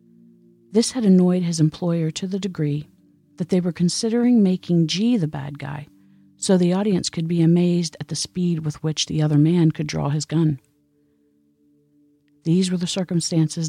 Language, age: English, 50-69